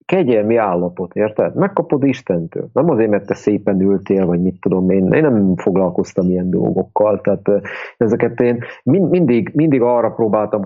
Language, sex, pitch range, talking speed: English, male, 100-130 Hz, 150 wpm